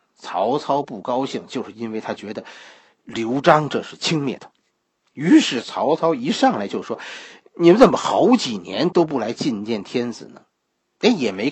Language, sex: Chinese, male